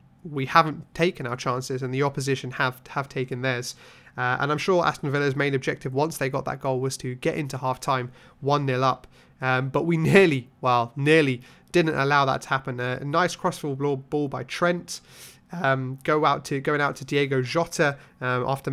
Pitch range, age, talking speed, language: 130-165 Hz, 30-49, 190 wpm, English